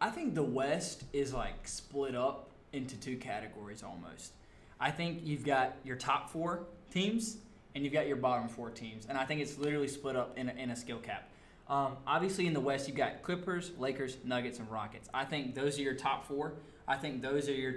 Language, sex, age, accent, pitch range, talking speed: English, male, 20-39, American, 120-145 Hz, 215 wpm